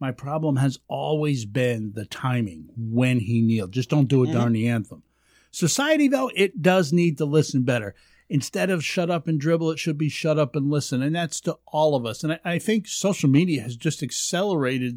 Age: 50-69